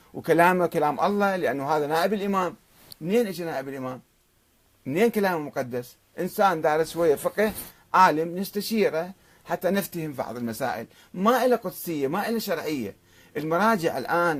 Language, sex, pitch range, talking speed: Arabic, male, 125-185 Hz, 135 wpm